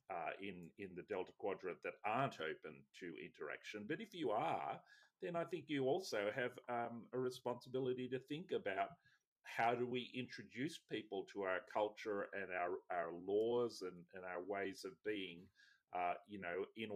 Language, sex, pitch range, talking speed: English, male, 110-185 Hz, 175 wpm